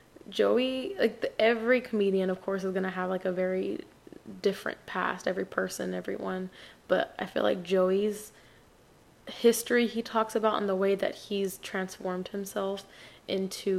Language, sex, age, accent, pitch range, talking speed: English, female, 20-39, American, 185-215 Hz, 155 wpm